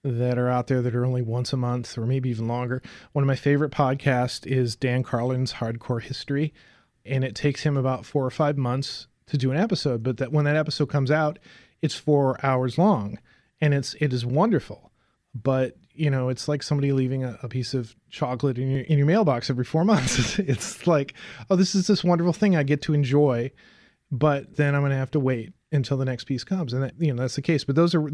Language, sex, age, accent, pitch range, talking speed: English, male, 30-49, American, 125-150 Hz, 230 wpm